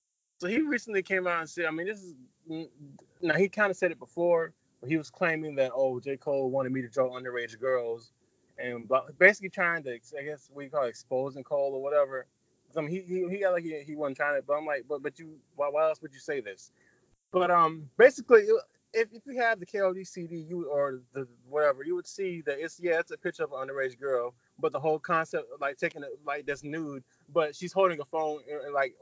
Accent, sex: American, male